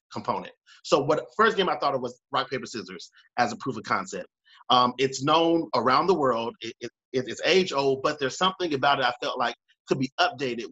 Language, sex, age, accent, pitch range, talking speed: English, male, 30-49, American, 125-180 Hz, 205 wpm